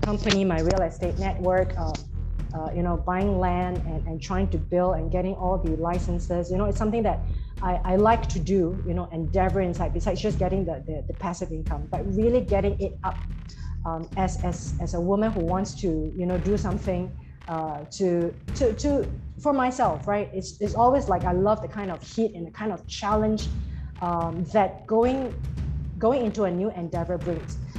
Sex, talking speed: female, 200 wpm